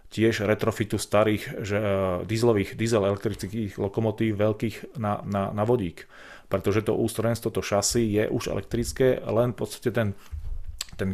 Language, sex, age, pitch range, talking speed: Slovak, male, 30-49, 100-110 Hz, 145 wpm